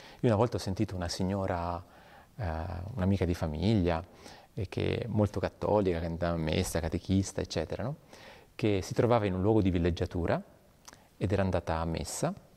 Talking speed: 170 wpm